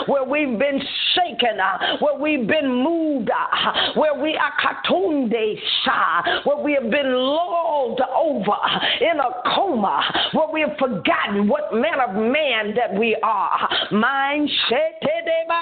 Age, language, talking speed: 40-59, English, 120 wpm